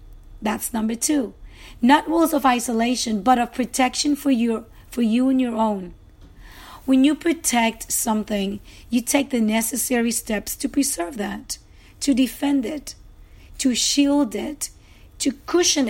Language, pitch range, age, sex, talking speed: English, 220-275 Hz, 40-59, female, 135 wpm